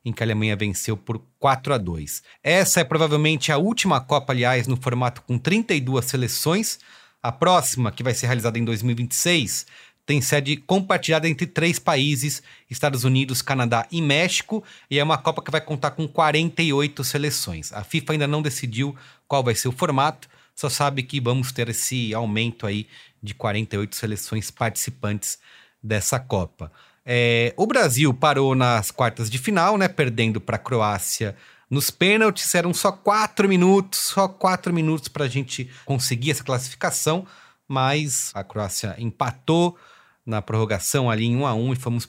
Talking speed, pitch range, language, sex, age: 165 wpm, 120-160 Hz, Portuguese, male, 30-49